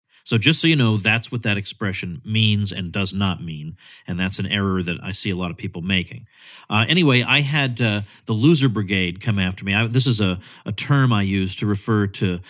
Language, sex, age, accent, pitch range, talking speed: English, male, 40-59, American, 95-120 Hz, 225 wpm